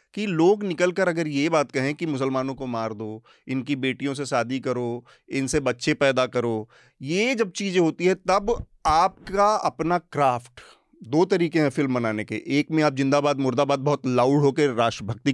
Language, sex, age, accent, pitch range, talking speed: Hindi, male, 30-49, native, 135-175 Hz, 175 wpm